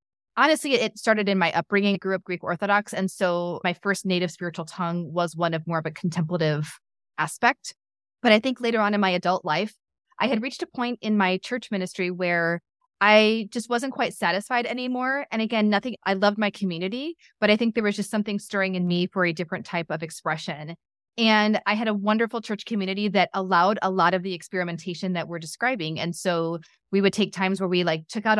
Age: 20-39